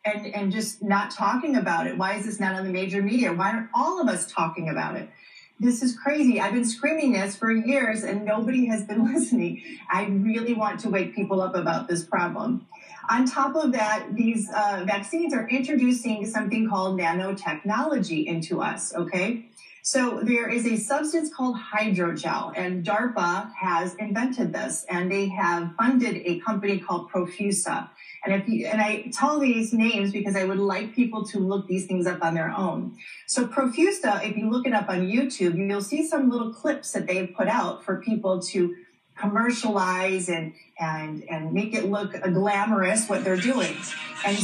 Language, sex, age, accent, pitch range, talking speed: English, female, 30-49, American, 190-240 Hz, 185 wpm